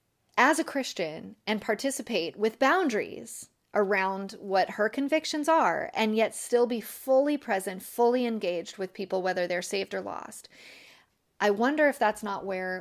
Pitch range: 190-245 Hz